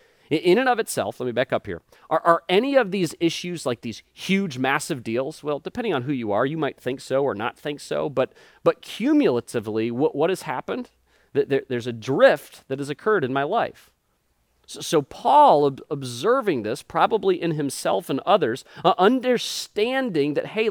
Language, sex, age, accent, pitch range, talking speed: English, male, 40-59, American, 135-215 Hz, 190 wpm